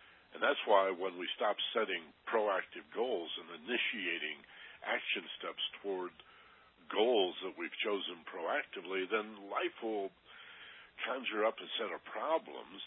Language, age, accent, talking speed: English, 60-79, American, 130 wpm